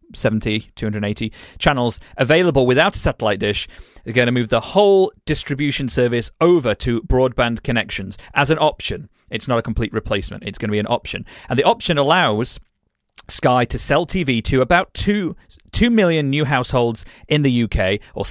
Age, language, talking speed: 40-59, English, 175 wpm